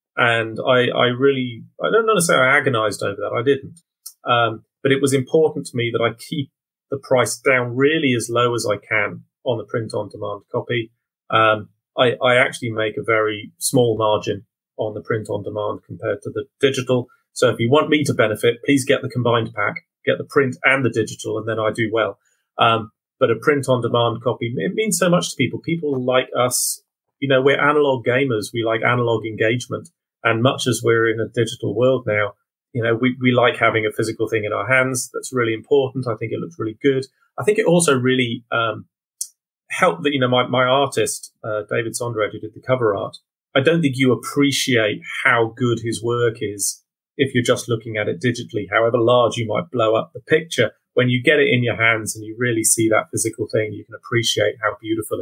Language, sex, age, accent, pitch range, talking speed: English, male, 30-49, British, 115-140 Hz, 210 wpm